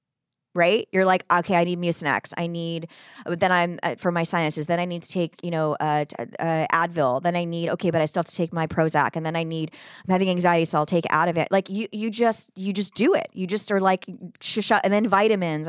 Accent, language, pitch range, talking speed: American, English, 165-195 Hz, 260 wpm